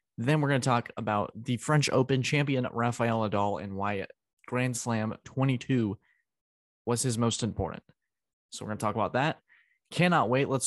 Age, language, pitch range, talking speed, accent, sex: 20-39, English, 105-125 Hz, 175 wpm, American, male